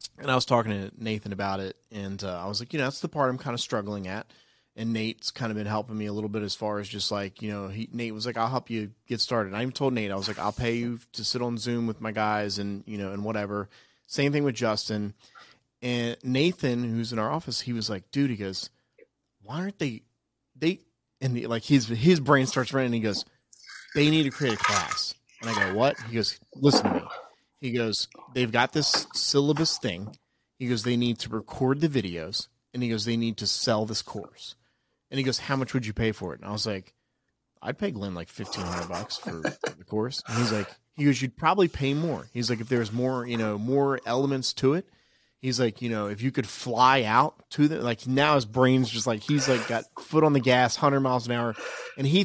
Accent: American